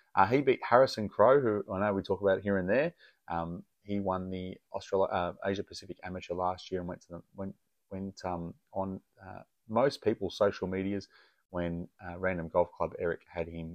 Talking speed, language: 190 wpm, English